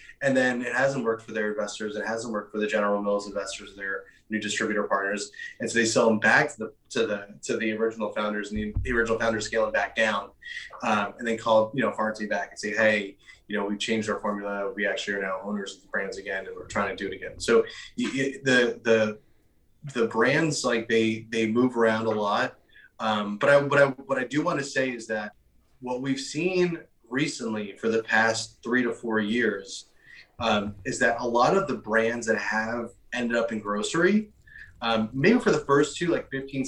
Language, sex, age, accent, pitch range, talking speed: English, male, 20-39, American, 105-130 Hz, 220 wpm